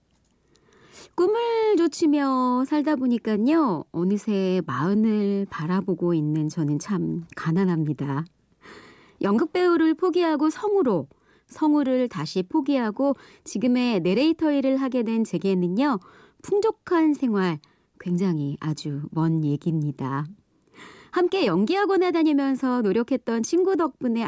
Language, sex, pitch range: Korean, male, 175-285 Hz